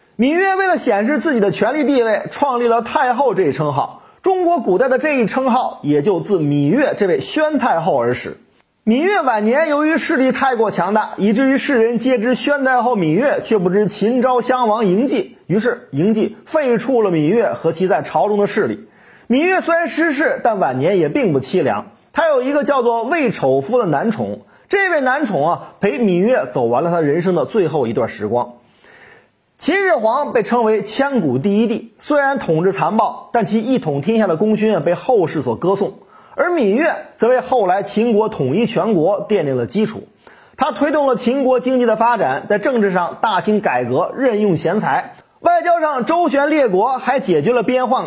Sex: male